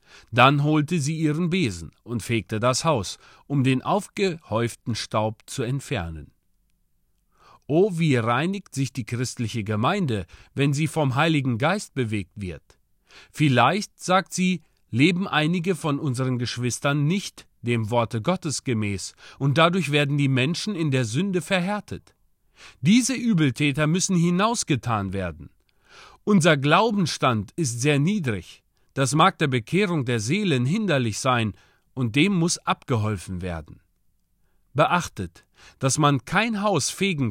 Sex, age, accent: male, 40-59, German